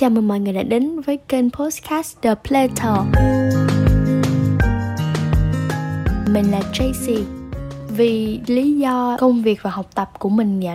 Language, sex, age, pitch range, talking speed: Vietnamese, female, 10-29, 180-240 Hz, 140 wpm